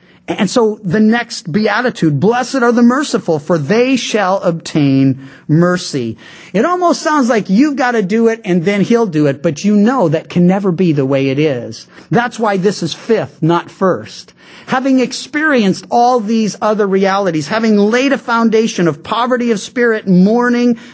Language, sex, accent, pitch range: English, male, American, 170-240 Hz